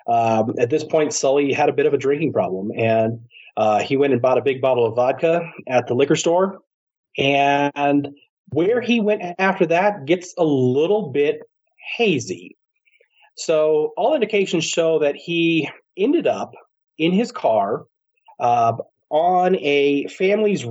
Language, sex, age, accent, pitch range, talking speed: English, male, 30-49, American, 130-190 Hz, 155 wpm